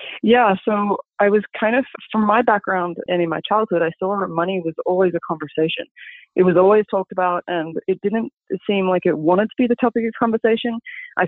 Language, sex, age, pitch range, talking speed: English, female, 20-39, 165-195 Hz, 215 wpm